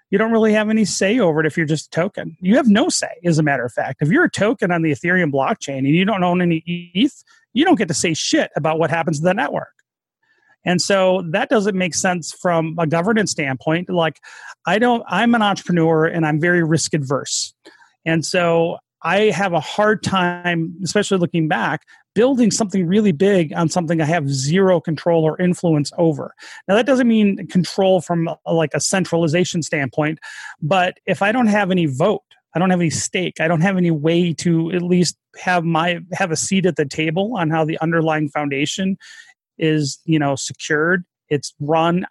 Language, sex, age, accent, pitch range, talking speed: English, male, 30-49, American, 160-200 Hz, 200 wpm